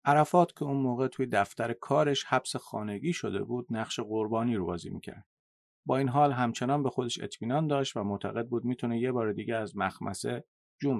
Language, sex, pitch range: Persian, male, 105-135 Hz